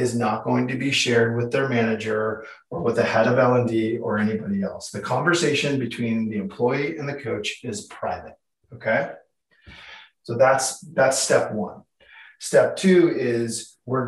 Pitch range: 115-145 Hz